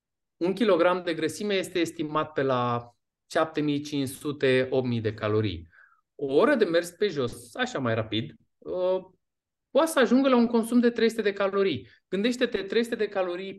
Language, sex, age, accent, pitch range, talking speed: Romanian, male, 20-39, native, 140-195 Hz, 150 wpm